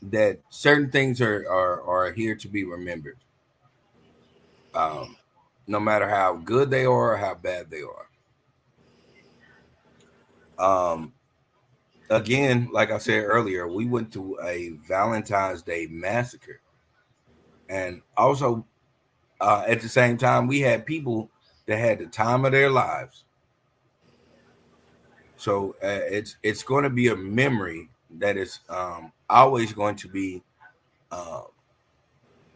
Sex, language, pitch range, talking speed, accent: male, English, 90-120 Hz, 125 wpm, American